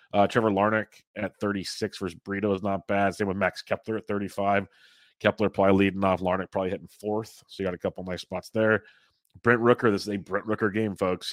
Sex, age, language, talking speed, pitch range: male, 30-49, English, 215 wpm, 95-110 Hz